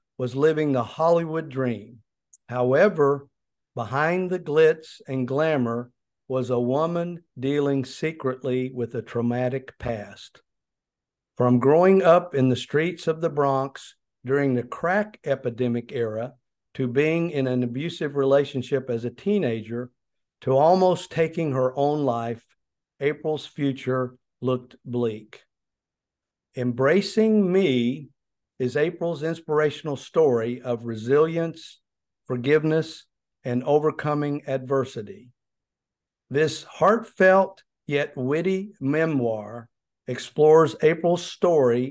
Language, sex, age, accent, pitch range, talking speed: English, male, 50-69, American, 125-155 Hz, 105 wpm